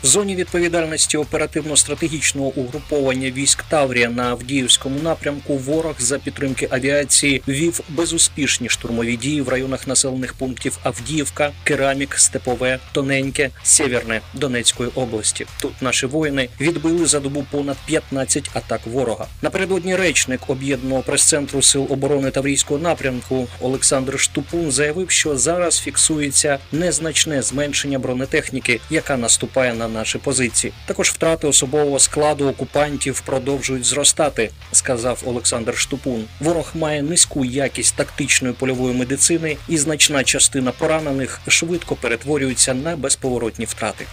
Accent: native